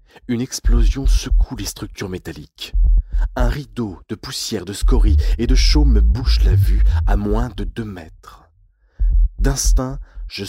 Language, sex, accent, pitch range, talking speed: French, male, French, 70-100 Hz, 150 wpm